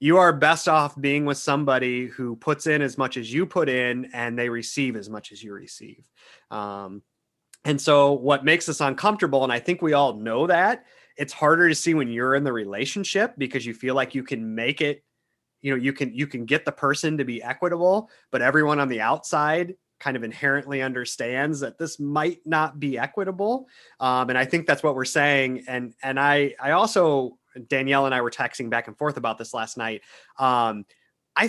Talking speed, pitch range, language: 210 wpm, 120-150 Hz, English